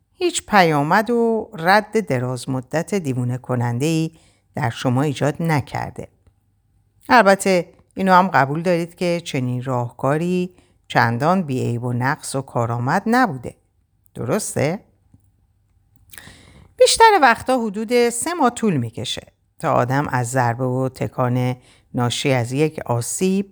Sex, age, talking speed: female, 50-69, 115 wpm